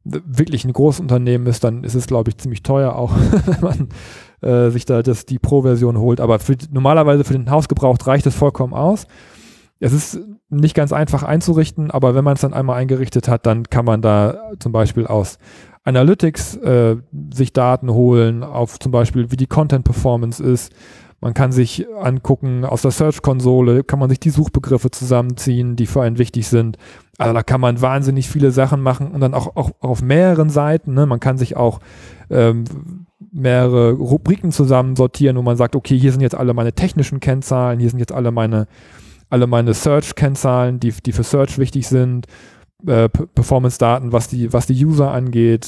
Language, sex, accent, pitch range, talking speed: German, male, German, 120-145 Hz, 185 wpm